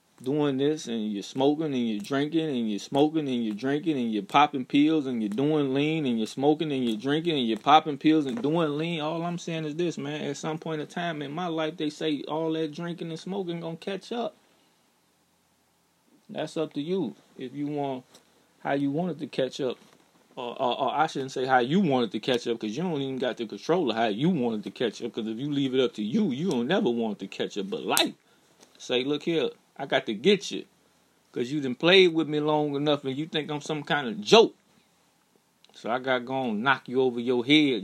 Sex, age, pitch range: male, 20-39, 130-160 Hz